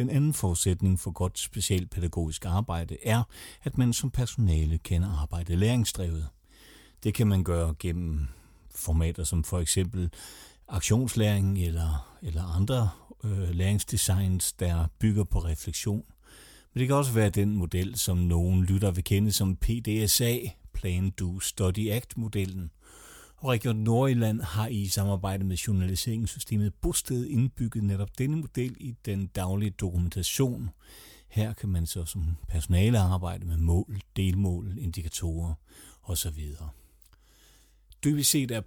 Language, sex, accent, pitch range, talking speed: Danish, male, native, 90-115 Hz, 125 wpm